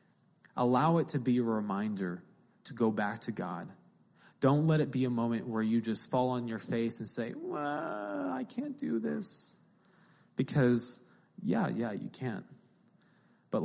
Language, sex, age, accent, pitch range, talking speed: English, male, 20-39, American, 105-125 Hz, 165 wpm